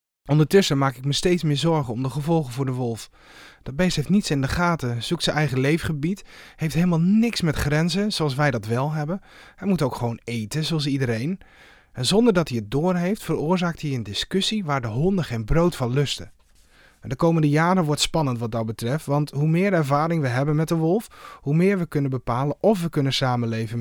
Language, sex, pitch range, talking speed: Dutch, male, 125-170 Hz, 210 wpm